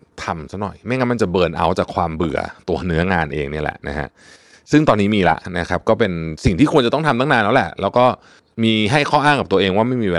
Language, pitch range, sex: Thai, 90-120 Hz, male